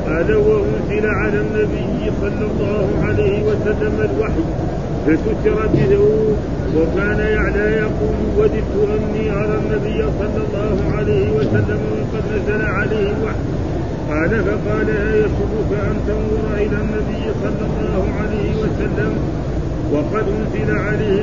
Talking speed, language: 120 wpm, Arabic